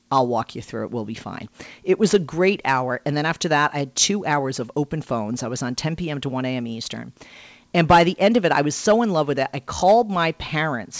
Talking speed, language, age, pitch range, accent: 275 wpm, English, 40-59, 135-195 Hz, American